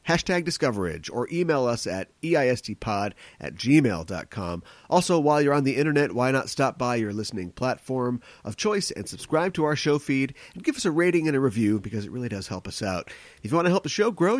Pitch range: 105-150 Hz